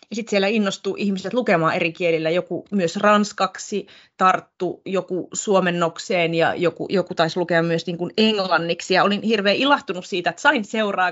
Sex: female